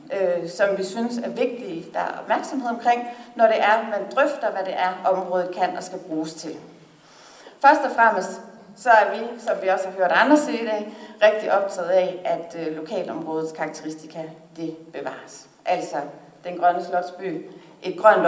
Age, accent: 60-79, native